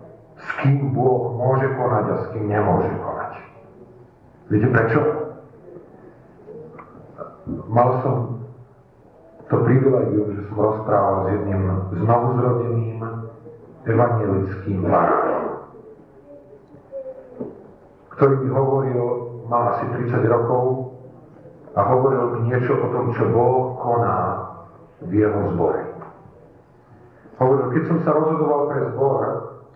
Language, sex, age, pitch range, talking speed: Slovak, male, 50-69, 115-135 Hz, 100 wpm